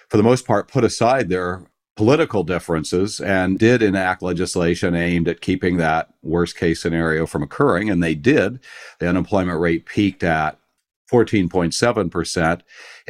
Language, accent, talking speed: English, American, 140 wpm